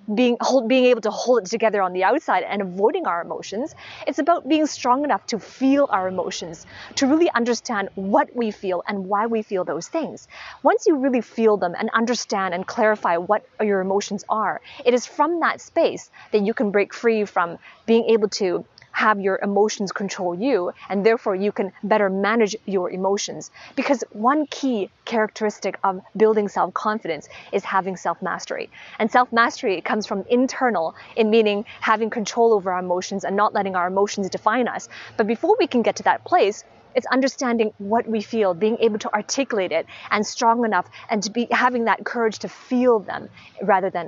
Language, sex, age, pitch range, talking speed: English, female, 20-39, 200-250 Hz, 185 wpm